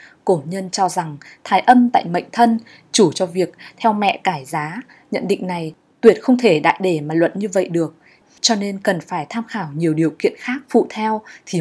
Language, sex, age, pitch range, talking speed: Vietnamese, female, 20-39, 180-230 Hz, 215 wpm